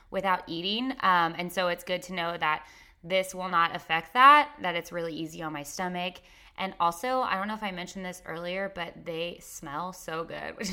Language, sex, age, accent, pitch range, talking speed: English, female, 20-39, American, 180-245 Hz, 215 wpm